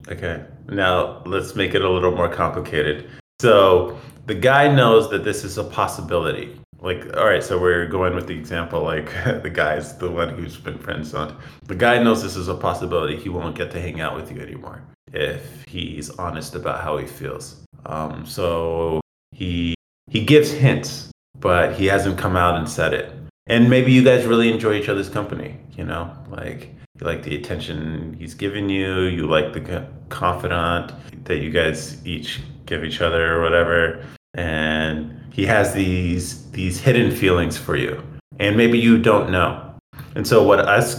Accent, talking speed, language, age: American, 180 wpm, English, 20-39